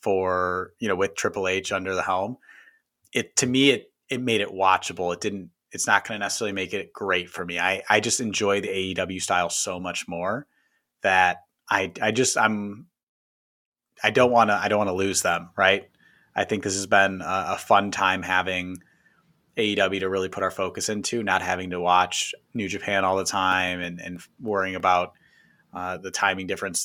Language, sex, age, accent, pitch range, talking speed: English, male, 30-49, American, 90-105 Hz, 200 wpm